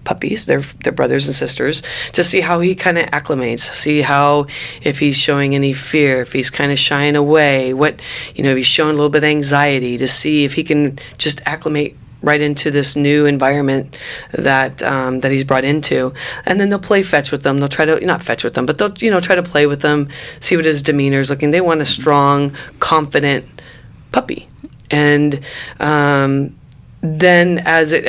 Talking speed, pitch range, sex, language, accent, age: 200 wpm, 130-150 Hz, female, English, American, 30-49